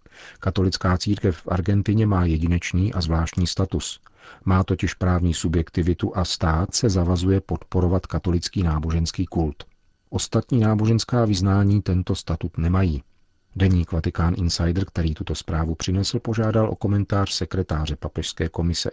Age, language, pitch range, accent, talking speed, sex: 40-59, Czech, 85-95 Hz, native, 125 wpm, male